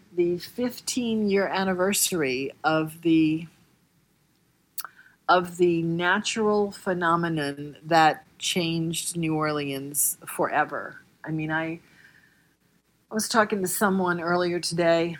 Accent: American